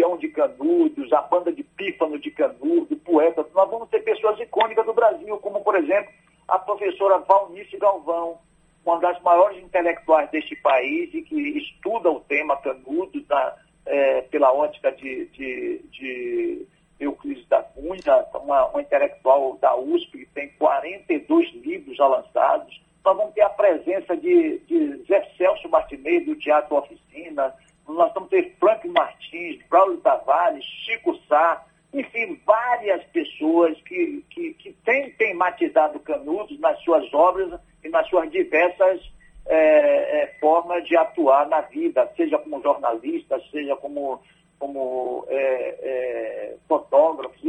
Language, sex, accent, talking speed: Portuguese, male, Brazilian, 140 wpm